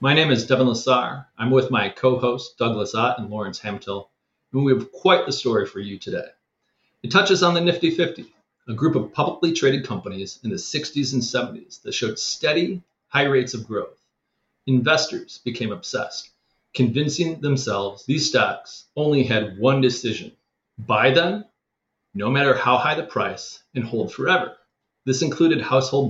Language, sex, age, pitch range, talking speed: English, male, 30-49, 115-150 Hz, 170 wpm